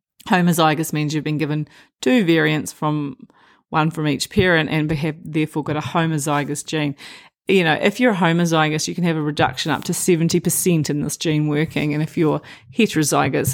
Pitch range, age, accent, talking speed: 155-190 Hz, 30-49, Australian, 180 wpm